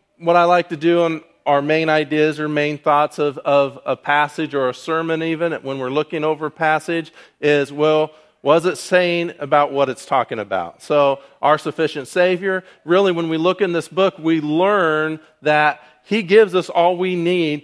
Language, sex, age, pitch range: English, male, 40-59, 150-175 Hz